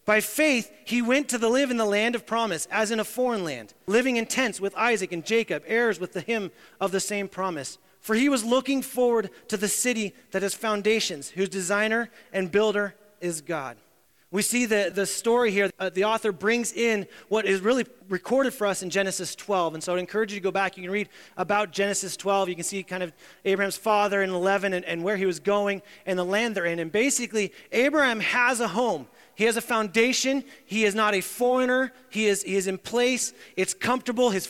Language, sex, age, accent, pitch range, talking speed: English, male, 30-49, American, 195-240 Hz, 220 wpm